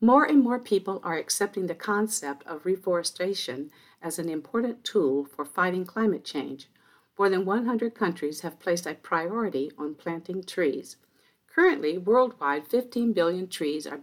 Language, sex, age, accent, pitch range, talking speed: English, female, 50-69, American, 155-215 Hz, 150 wpm